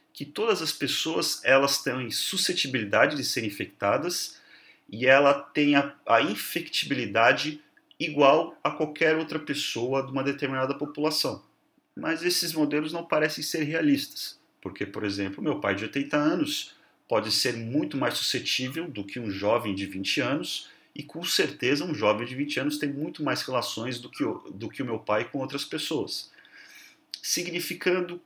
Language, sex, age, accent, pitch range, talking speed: Portuguese, male, 40-59, Brazilian, 115-165 Hz, 155 wpm